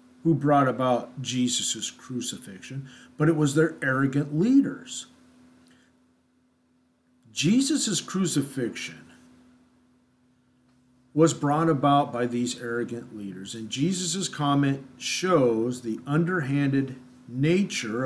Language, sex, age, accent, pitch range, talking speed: English, male, 50-69, American, 120-160 Hz, 90 wpm